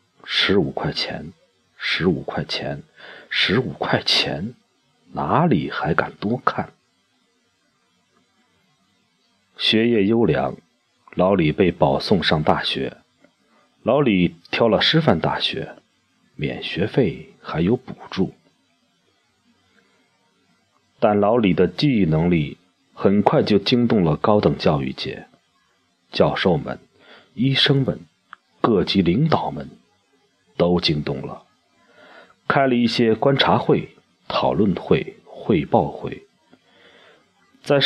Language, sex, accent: Chinese, male, native